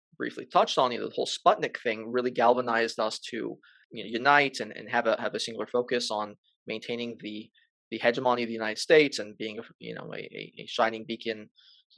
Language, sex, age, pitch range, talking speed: English, male, 20-39, 110-140 Hz, 215 wpm